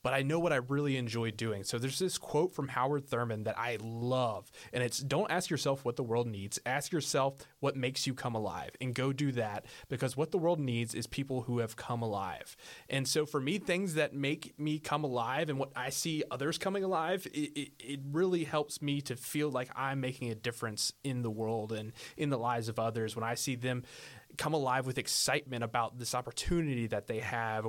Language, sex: English, male